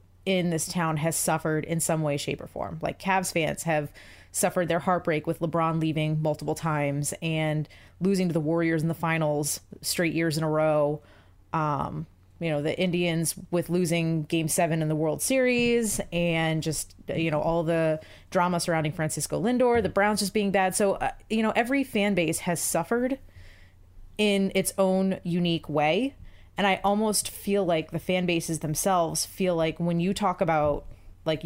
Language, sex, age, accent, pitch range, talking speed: English, female, 30-49, American, 155-190 Hz, 180 wpm